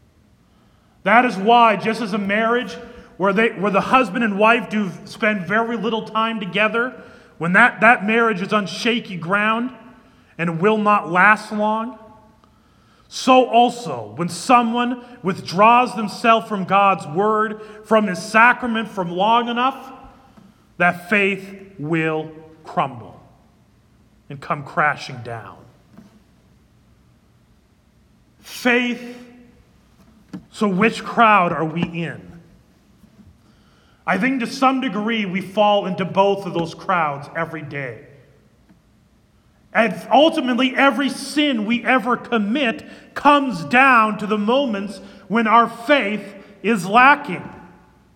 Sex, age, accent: male, 30-49, American